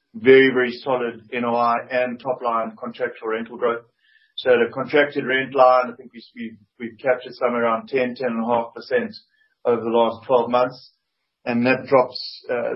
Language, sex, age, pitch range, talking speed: English, male, 40-59, 115-130 Hz, 155 wpm